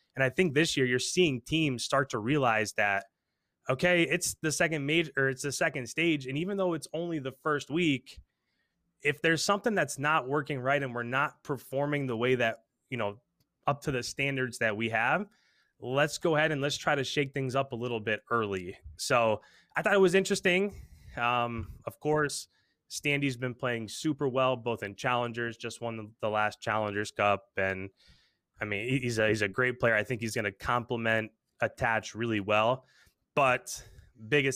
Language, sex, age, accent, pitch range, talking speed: English, male, 20-39, American, 110-145 Hz, 190 wpm